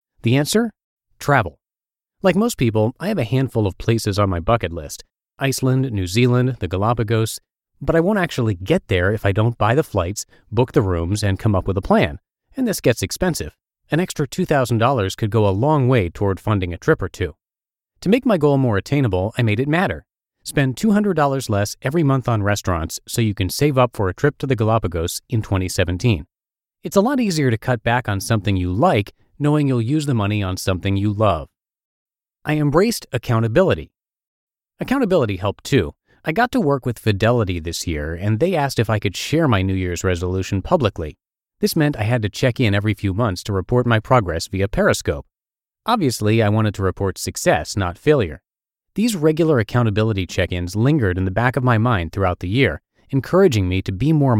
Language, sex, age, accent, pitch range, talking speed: English, male, 30-49, American, 95-140 Hz, 195 wpm